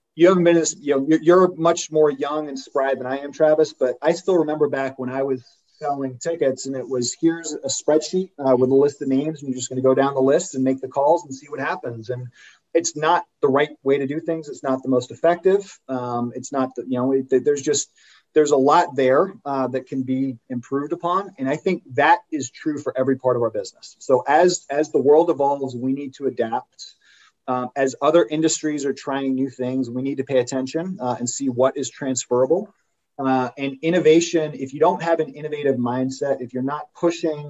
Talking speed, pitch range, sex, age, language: 225 wpm, 130-160 Hz, male, 30-49, English